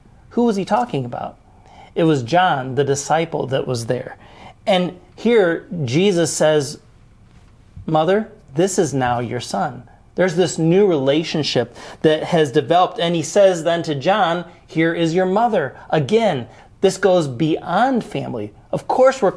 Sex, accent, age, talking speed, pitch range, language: male, American, 40-59, 150 wpm, 130-170 Hz, English